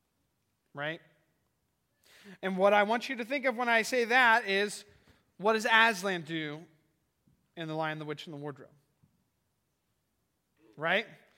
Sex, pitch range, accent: male, 160-230 Hz, American